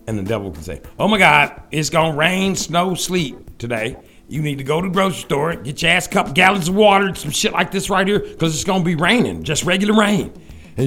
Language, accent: English, American